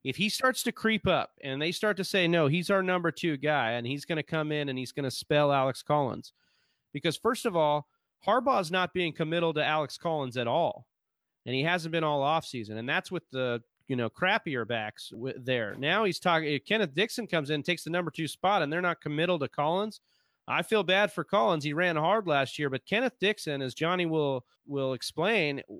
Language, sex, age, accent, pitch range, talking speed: English, male, 30-49, American, 140-185 Hz, 225 wpm